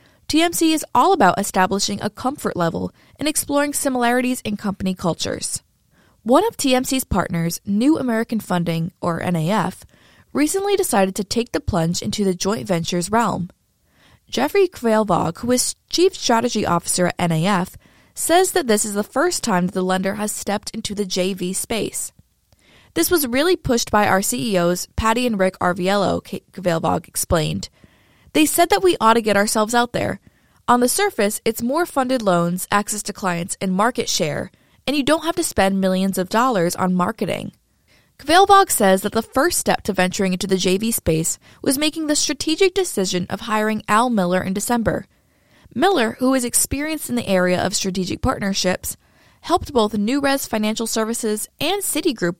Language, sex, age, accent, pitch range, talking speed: English, female, 20-39, American, 185-265 Hz, 170 wpm